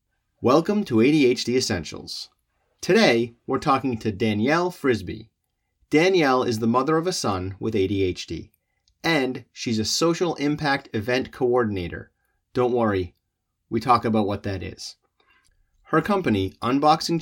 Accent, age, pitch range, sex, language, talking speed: American, 30-49, 95-135 Hz, male, English, 130 wpm